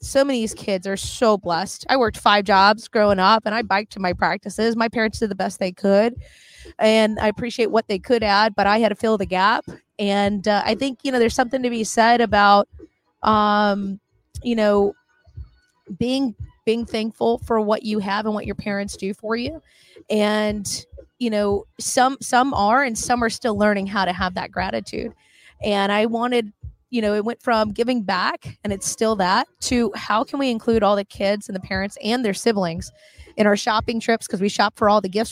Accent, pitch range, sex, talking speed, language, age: American, 200-230 Hz, female, 210 wpm, English, 20-39